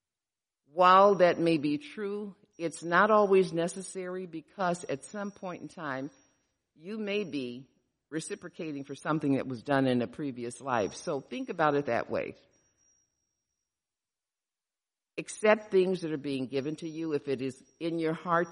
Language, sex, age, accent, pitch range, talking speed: English, female, 50-69, American, 130-180 Hz, 155 wpm